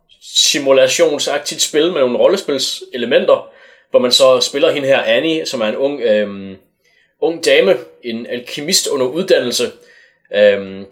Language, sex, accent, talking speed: Danish, male, native, 130 wpm